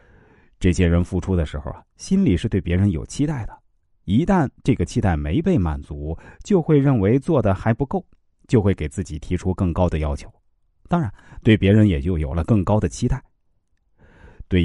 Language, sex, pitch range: Chinese, male, 85-140 Hz